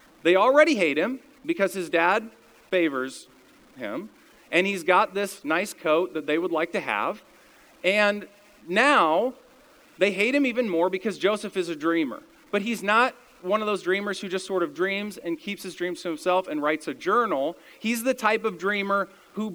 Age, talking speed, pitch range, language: 40-59, 185 wpm, 175-280 Hz, English